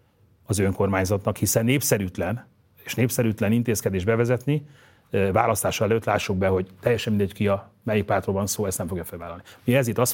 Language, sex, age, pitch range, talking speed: Hungarian, male, 30-49, 100-125 Hz, 160 wpm